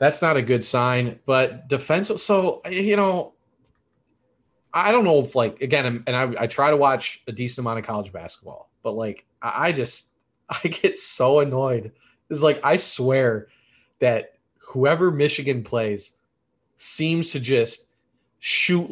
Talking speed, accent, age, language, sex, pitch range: 150 wpm, American, 20-39, English, male, 115-145 Hz